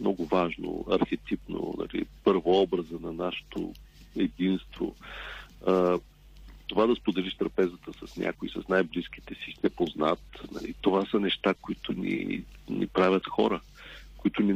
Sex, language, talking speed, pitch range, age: male, Bulgarian, 130 wpm, 90-120 Hz, 40-59